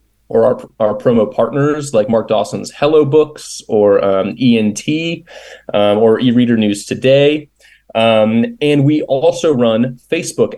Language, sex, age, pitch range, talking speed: English, male, 20-39, 110-140 Hz, 135 wpm